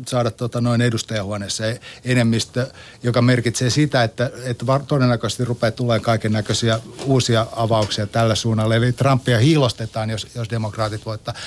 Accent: native